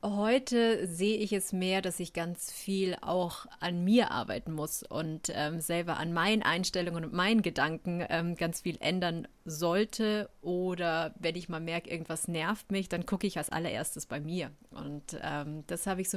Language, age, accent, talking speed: German, 30-49, German, 180 wpm